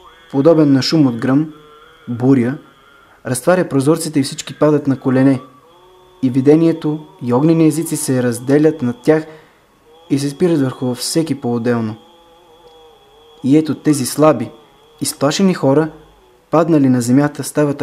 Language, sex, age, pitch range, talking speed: Bulgarian, male, 20-39, 135-165 Hz, 130 wpm